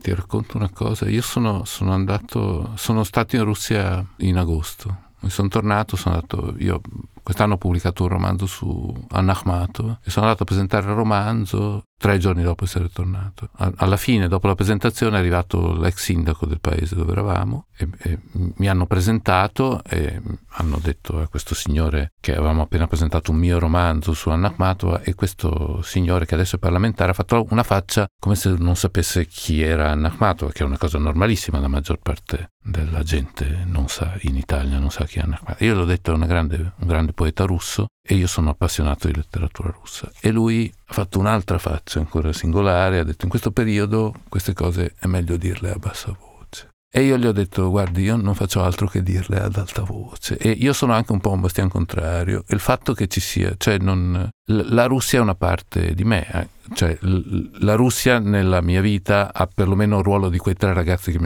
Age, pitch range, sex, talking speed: 50-69, 85-105 Hz, male, 200 wpm